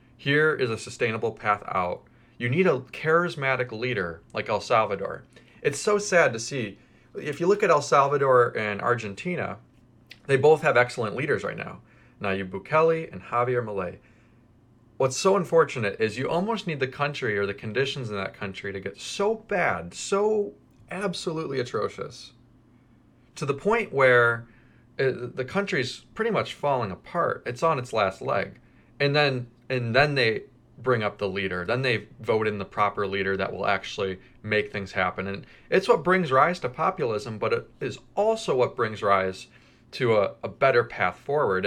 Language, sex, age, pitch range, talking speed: English, male, 30-49, 110-145 Hz, 170 wpm